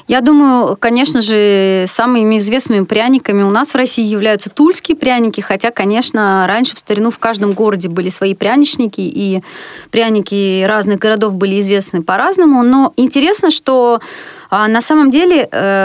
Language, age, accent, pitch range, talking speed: Russian, 30-49, native, 200-260 Hz, 145 wpm